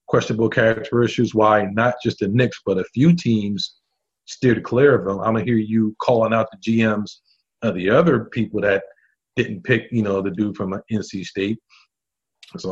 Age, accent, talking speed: 40-59, American, 190 wpm